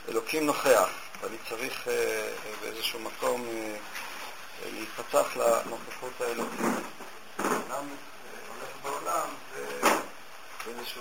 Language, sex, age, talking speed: Hebrew, male, 50-69, 85 wpm